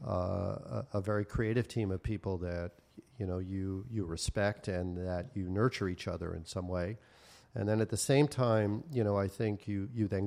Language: English